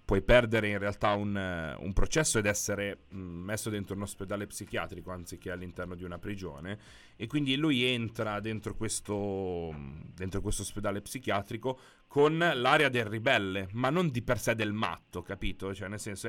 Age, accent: 30-49, native